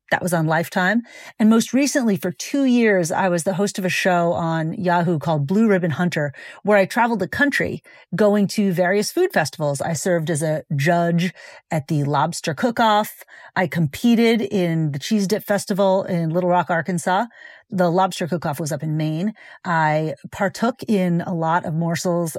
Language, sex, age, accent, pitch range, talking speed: English, female, 40-59, American, 180-235 Hz, 180 wpm